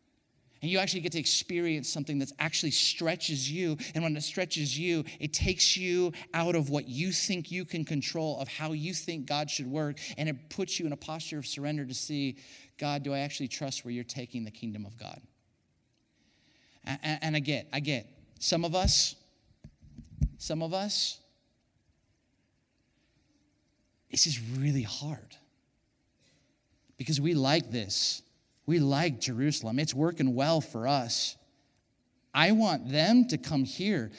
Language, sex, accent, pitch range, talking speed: English, male, American, 130-170 Hz, 160 wpm